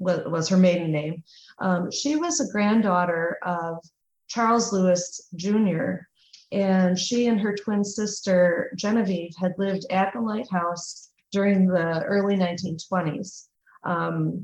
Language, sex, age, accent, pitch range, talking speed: English, female, 30-49, American, 170-200 Hz, 125 wpm